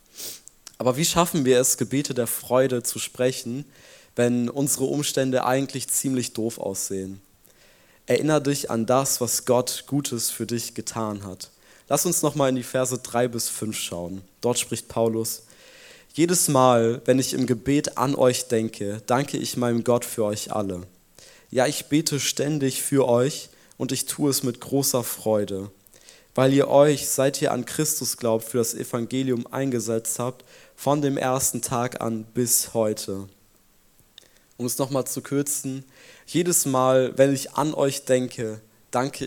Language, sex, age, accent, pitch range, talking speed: German, male, 20-39, German, 115-140 Hz, 160 wpm